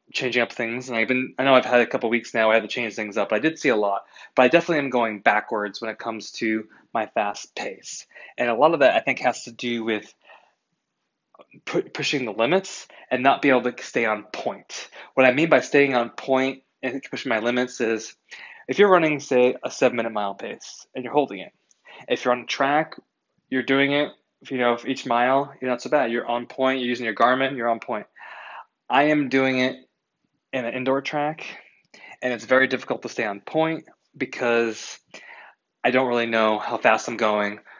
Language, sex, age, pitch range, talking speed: English, male, 20-39, 115-135 Hz, 220 wpm